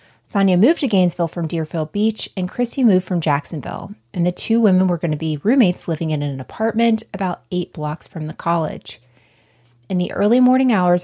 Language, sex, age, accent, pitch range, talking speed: English, female, 30-49, American, 155-200 Hz, 195 wpm